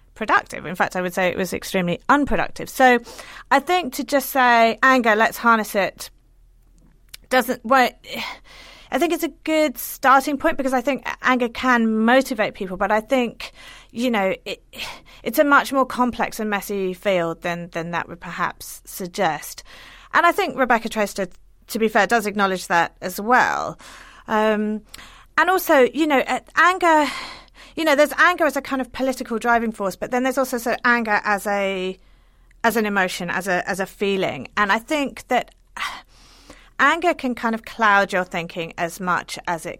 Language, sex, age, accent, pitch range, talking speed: English, female, 30-49, British, 190-250 Hz, 175 wpm